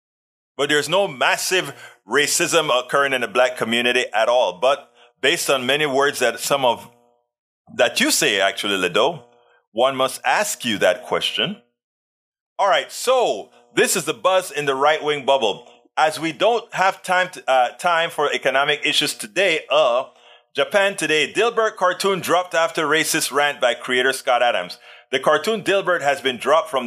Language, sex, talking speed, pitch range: English, male, 165 wpm, 135-185 Hz